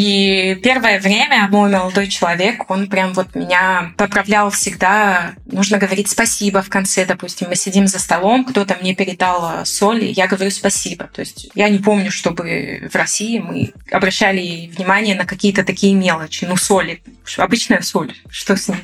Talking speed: 160 wpm